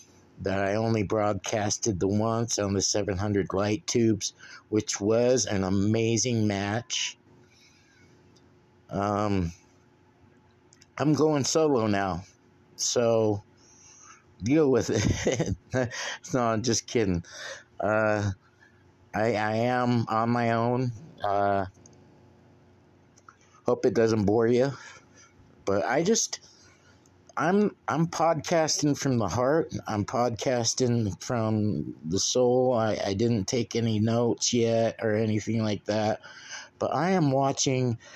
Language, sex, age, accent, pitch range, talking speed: English, male, 50-69, American, 105-125 Hz, 115 wpm